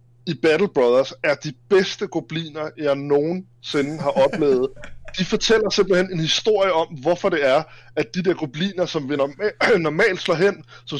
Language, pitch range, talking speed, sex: Danish, 155-210 Hz, 165 wpm, male